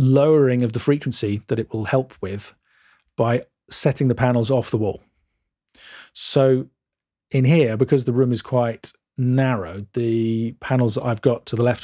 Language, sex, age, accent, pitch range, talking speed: English, male, 40-59, British, 115-135 Hz, 160 wpm